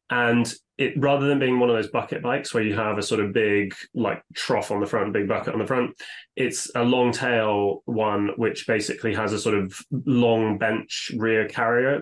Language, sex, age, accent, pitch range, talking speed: English, male, 20-39, British, 100-115 Hz, 210 wpm